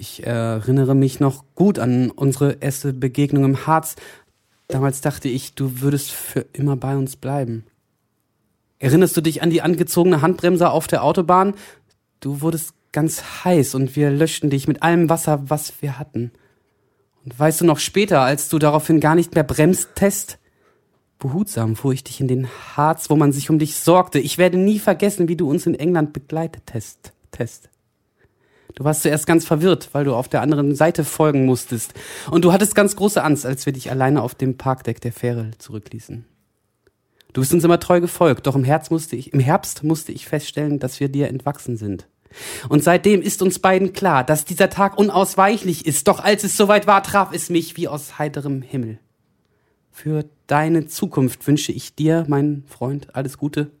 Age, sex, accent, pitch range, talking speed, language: 20-39, male, German, 130-170 Hz, 180 wpm, German